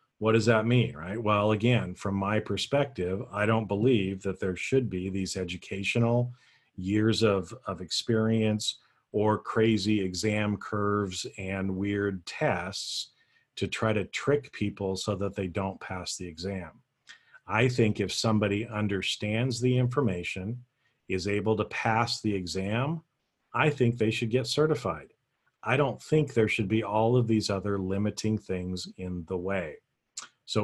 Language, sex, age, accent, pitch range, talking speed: English, male, 40-59, American, 95-120 Hz, 150 wpm